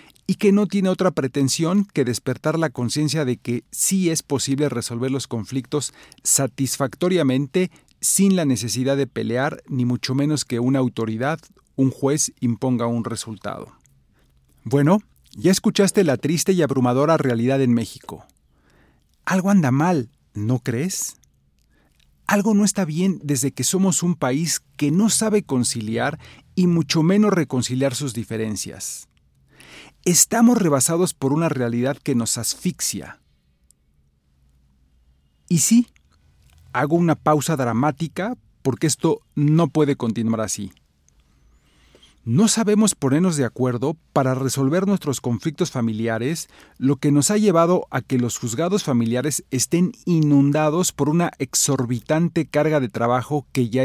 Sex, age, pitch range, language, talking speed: male, 40-59, 115-165 Hz, Spanish, 135 wpm